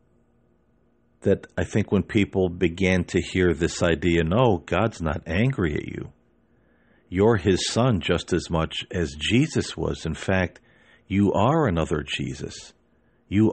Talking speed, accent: 140 wpm, American